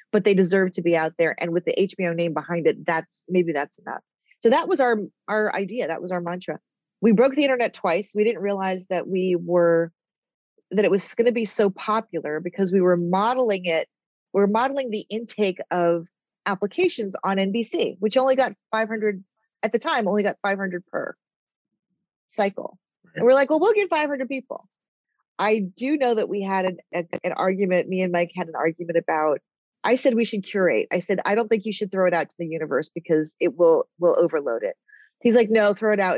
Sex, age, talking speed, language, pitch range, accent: female, 30-49, 210 wpm, English, 180-235 Hz, American